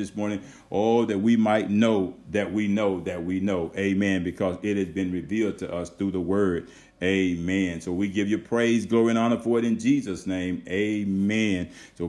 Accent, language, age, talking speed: American, English, 50-69, 205 wpm